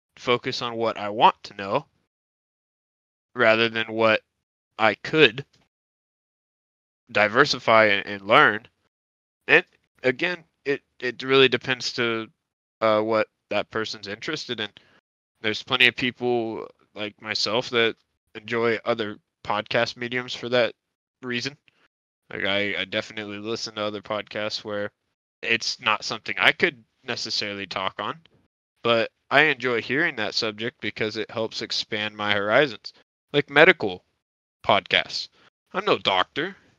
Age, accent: 20-39, American